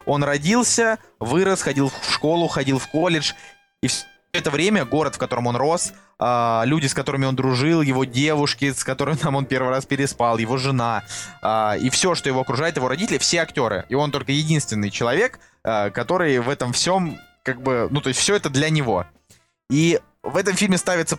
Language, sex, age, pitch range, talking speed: Russian, male, 20-39, 120-150 Hz, 185 wpm